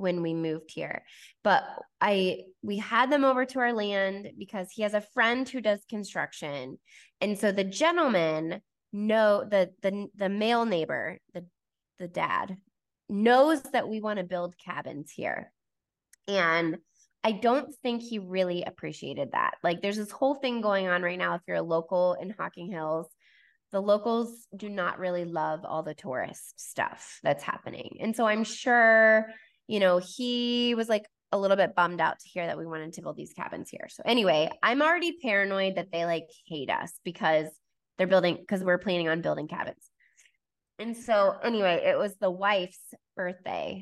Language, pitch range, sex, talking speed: English, 175-215 Hz, female, 175 wpm